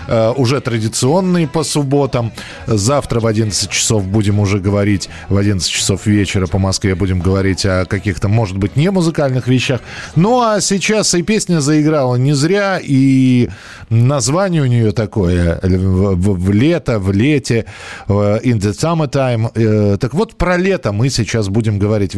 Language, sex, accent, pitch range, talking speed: Russian, male, native, 105-150 Hz, 150 wpm